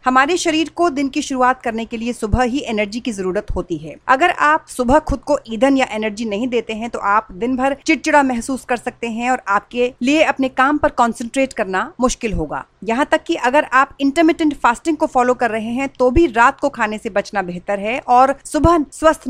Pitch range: 215-275 Hz